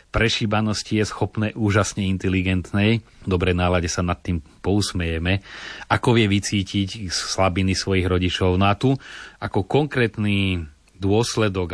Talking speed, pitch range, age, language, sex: 110 wpm, 90-105 Hz, 30-49, Slovak, male